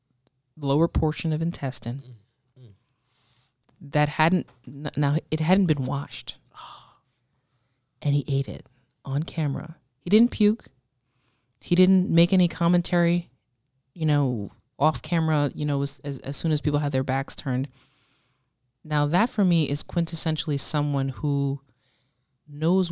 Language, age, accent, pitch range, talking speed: English, 20-39, American, 125-155 Hz, 130 wpm